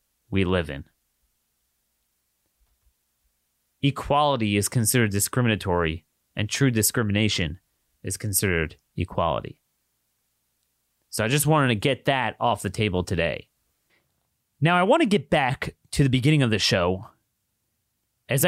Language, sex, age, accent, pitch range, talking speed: English, male, 30-49, American, 105-140 Hz, 120 wpm